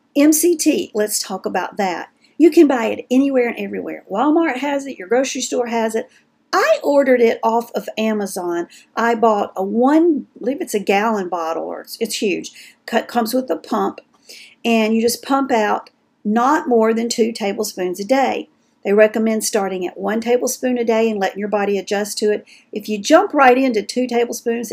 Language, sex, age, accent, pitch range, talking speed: English, female, 50-69, American, 210-280 Hz, 190 wpm